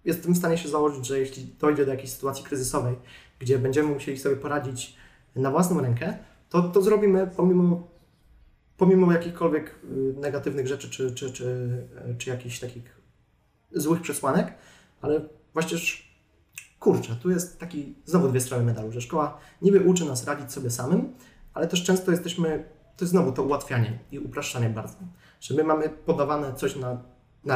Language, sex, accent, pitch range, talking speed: Polish, male, native, 125-155 Hz, 155 wpm